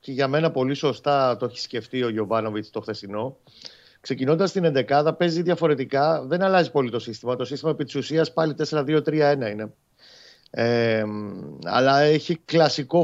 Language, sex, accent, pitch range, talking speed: Greek, male, native, 125-165 Hz, 155 wpm